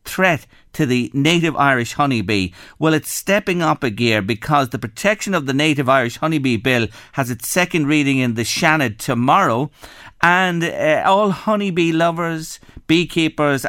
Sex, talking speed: male, 155 wpm